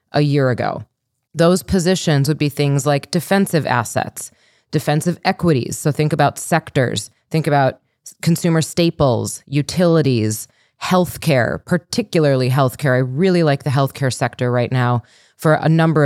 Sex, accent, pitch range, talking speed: female, American, 135-170 Hz, 135 wpm